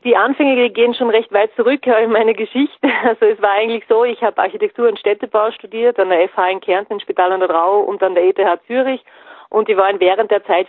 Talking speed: 230 wpm